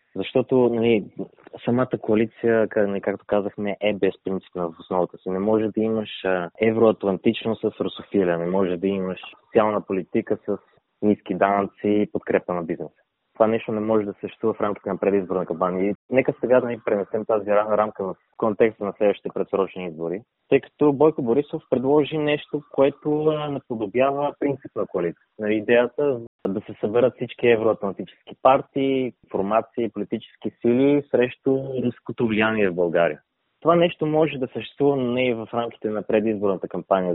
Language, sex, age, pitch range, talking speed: Bulgarian, male, 20-39, 100-130 Hz, 155 wpm